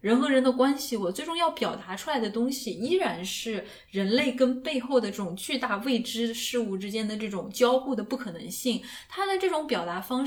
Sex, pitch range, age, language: female, 195-255 Hz, 10-29, Chinese